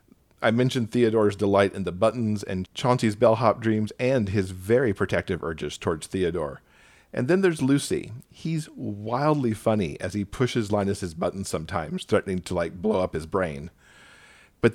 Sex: male